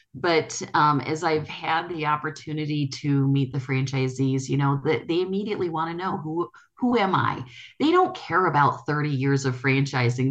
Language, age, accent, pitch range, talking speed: English, 30-49, American, 135-180 Hz, 180 wpm